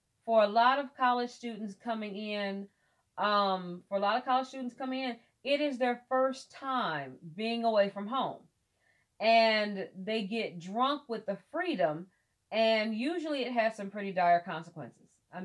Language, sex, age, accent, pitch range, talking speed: English, female, 40-59, American, 175-235 Hz, 165 wpm